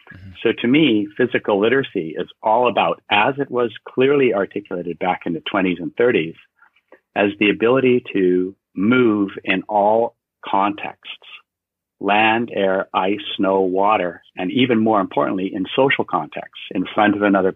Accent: American